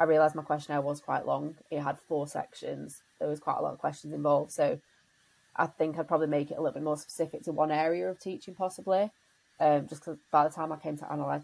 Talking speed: 245 wpm